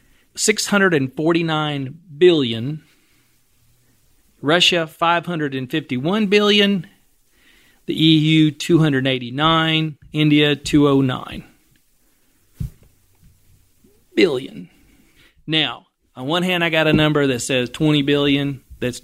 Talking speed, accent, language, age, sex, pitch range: 75 wpm, American, English, 40-59, male, 125-155 Hz